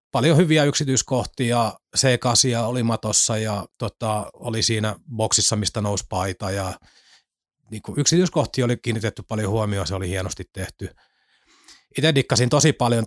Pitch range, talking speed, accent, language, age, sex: 100-120 Hz, 135 wpm, native, Finnish, 30-49, male